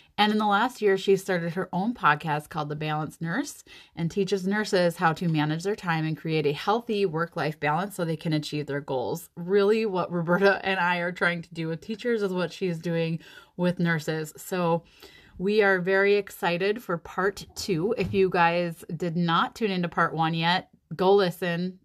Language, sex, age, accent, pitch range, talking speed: English, female, 20-39, American, 160-195 Hz, 195 wpm